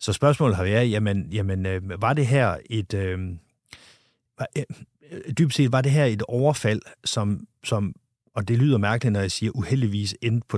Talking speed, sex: 155 wpm, male